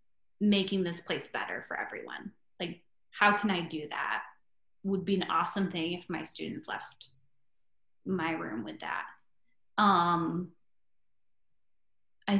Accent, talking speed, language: American, 130 wpm, English